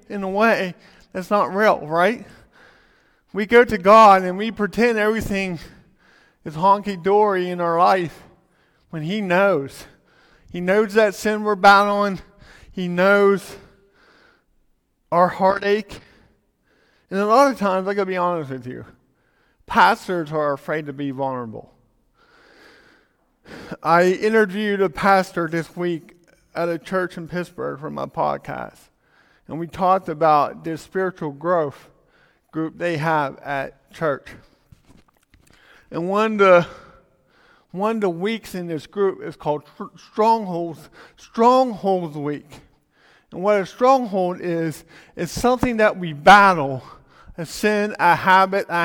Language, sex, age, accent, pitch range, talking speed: English, male, 40-59, American, 170-205 Hz, 130 wpm